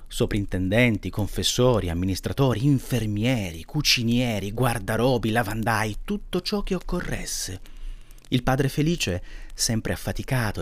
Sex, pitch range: male, 95-125 Hz